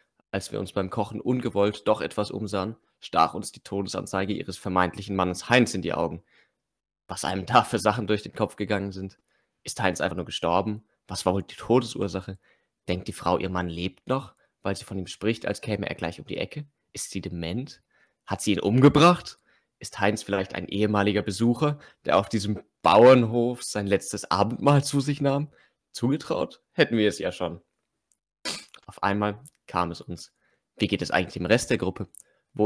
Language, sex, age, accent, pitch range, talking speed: German, male, 20-39, German, 90-110 Hz, 185 wpm